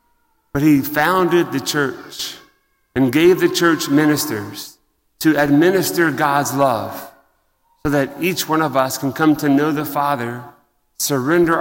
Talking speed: 140 wpm